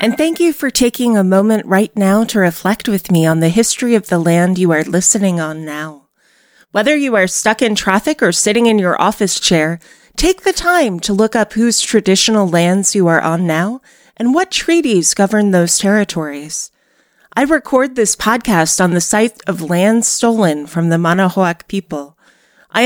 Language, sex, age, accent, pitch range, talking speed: English, female, 30-49, American, 170-220 Hz, 185 wpm